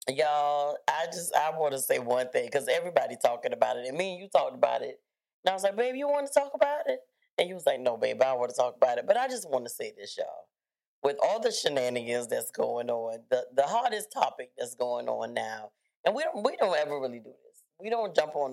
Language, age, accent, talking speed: English, 30-49, American, 260 wpm